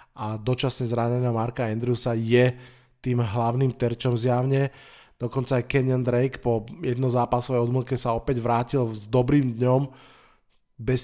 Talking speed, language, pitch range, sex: 135 wpm, Slovak, 120-140 Hz, male